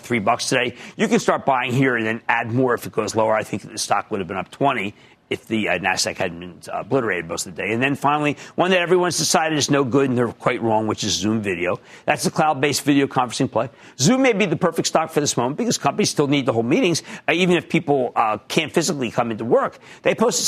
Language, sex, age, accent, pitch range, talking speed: English, male, 50-69, American, 125-185 Hz, 250 wpm